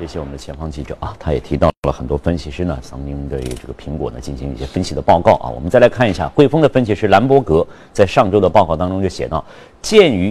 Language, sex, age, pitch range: Chinese, male, 50-69, 70-100 Hz